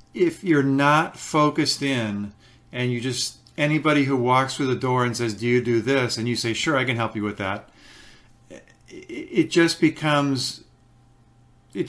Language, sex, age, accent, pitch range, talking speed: English, male, 50-69, American, 120-145 Hz, 170 wpm